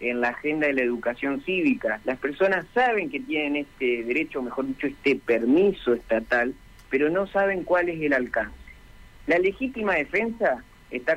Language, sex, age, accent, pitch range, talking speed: Spanish, male, 50-69, Argentinian, 135-205 Hz, 165 wpm